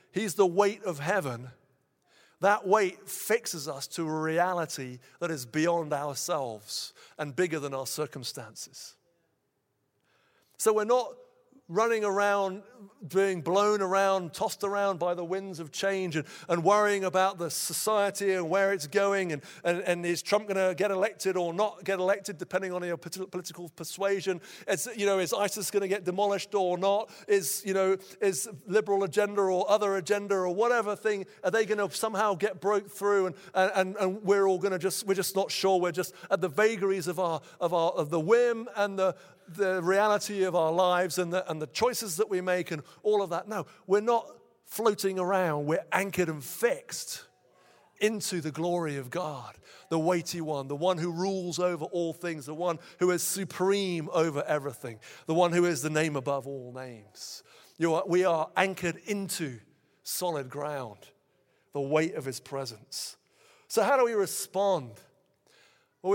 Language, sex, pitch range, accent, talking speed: English, male, 165-200 Hz, British, 180 wpm